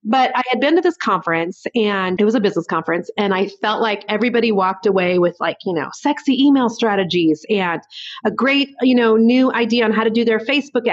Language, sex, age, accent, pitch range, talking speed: English, female, 30-49, American, 195-245 Hz, 220 wpm